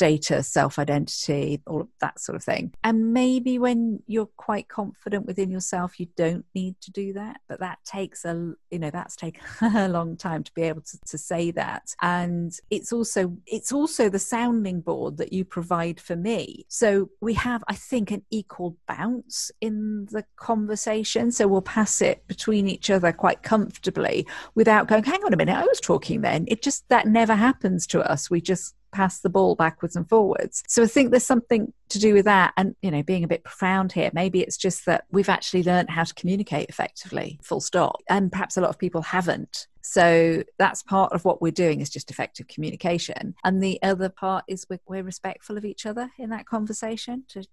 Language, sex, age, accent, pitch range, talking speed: English, female, 40-59, British, 175-220 Hz, 205 wpm